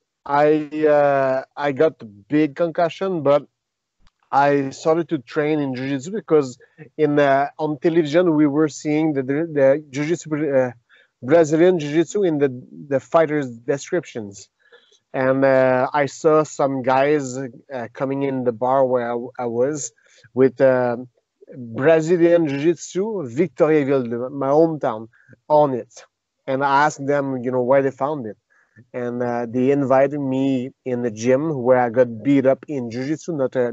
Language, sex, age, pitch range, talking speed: English, male, 30-49, 130-155 Hz, 150 wpm